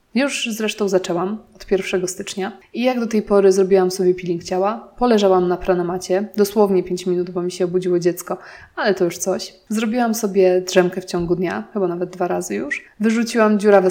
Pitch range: 185-220 Hz